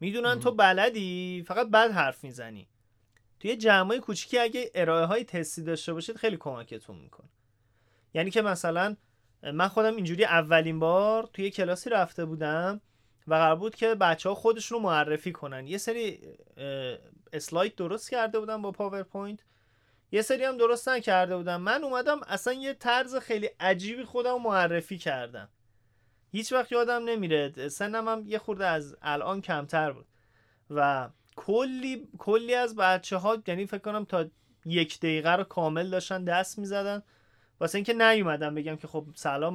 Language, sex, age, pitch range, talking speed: Persian, male, 30-49, 145-215 Hz, 155 wpm